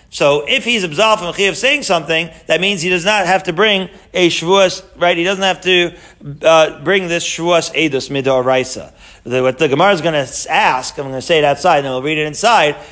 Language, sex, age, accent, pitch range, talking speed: English, male, 40-59, American, 160-195 Hz, 230 wpm